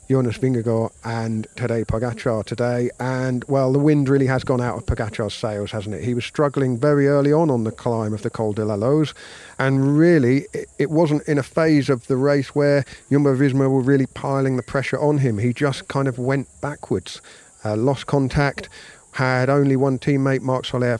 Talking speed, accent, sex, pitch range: 200 wpm, British, male, 115-140 Hz